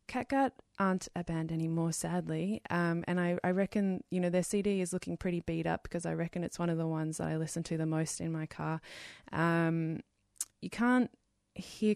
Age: 20-39